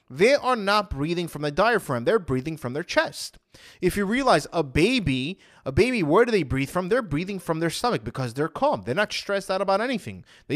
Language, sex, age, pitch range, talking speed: English, male, 20-39, 140-195 Hz, 220 wpm